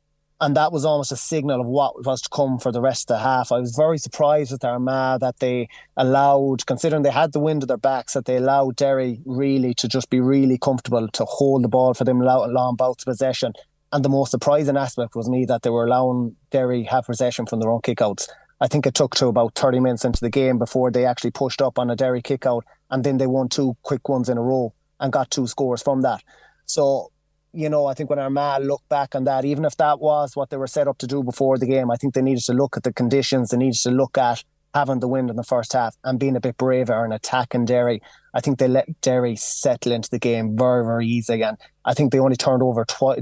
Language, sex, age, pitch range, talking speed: English, male, 20-39, 125-140 Hz, 255 wpm